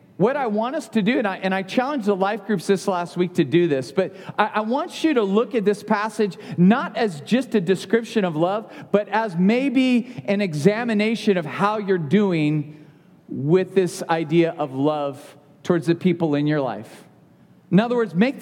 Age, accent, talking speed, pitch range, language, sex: 40-59, American, 200 wpm, 160-210 Hz, English, male